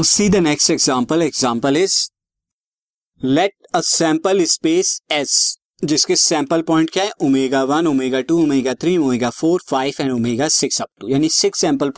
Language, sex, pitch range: Hindi, male, 135-190 Hz